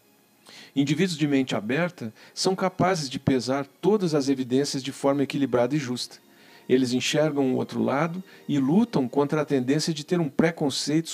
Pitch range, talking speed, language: 130-180 Hz, 160 wpm, Portuguese